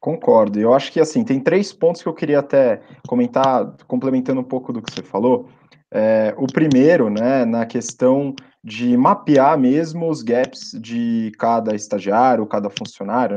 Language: Portuguese